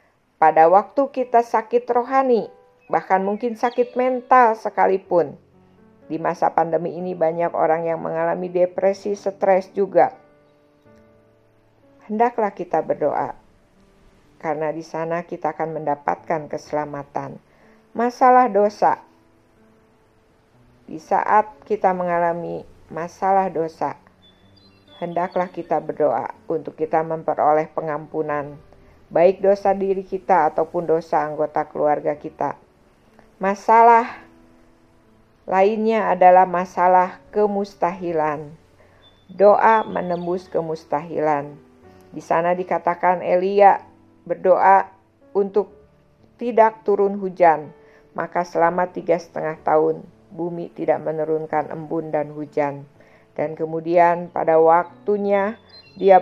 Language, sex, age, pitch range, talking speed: Indonesian, female, 50-69, 150-195 Hz, 95 wpm